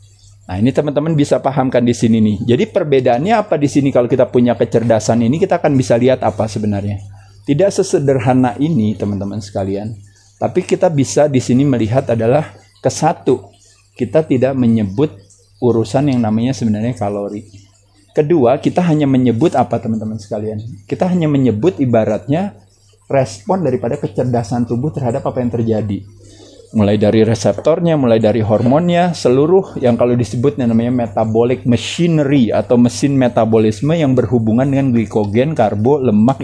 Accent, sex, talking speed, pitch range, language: native, male, 140 wpm, 110-140 Hz, Indonesian